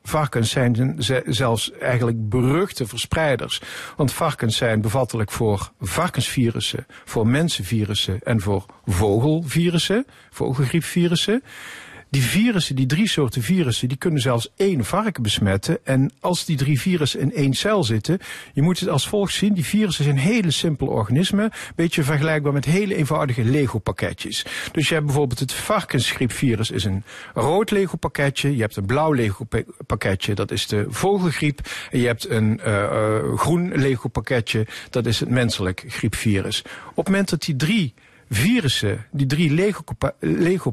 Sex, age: male, 50-69